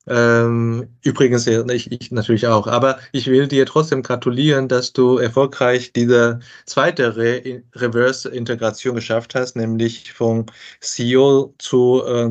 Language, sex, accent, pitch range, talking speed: German, male, German, 120-135 Hz, 110 wpm